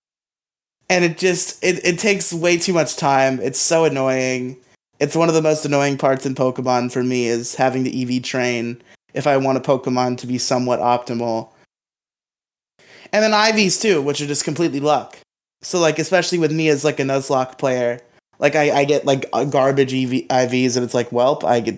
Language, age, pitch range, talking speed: English, 20-39, 125-160 Hz, 195 wpm